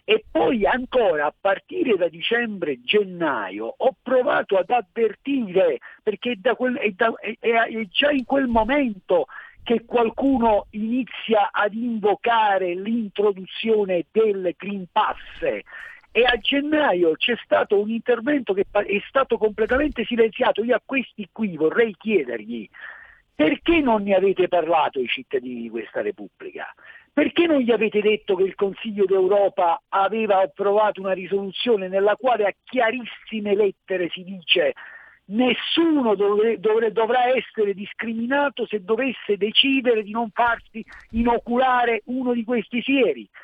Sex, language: male, Italian